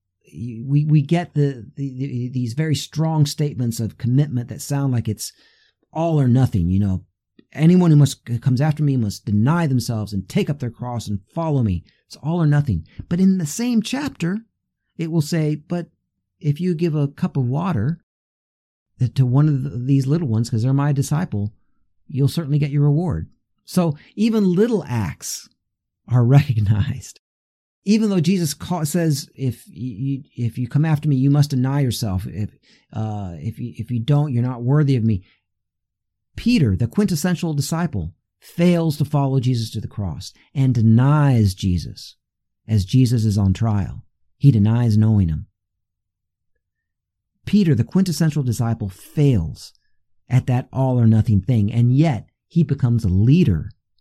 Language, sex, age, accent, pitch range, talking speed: English, male, 50-69, American, 105-150 Hz, 160 wpm